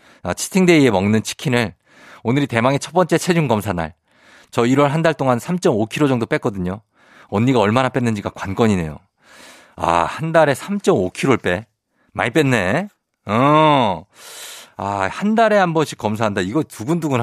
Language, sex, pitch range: Korean, male, 110-165 Hz